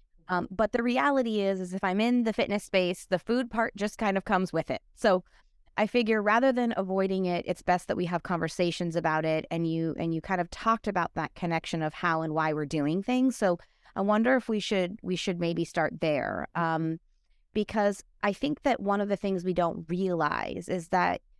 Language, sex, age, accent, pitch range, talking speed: English, female, 20-39, American, 165-205 Hz, 220 wpm